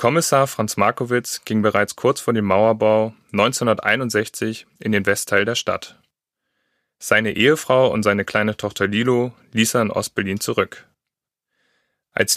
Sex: male